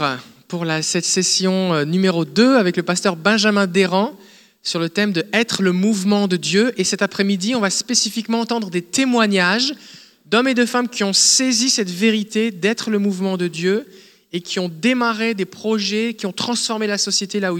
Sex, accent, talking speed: male, French, 200 wpm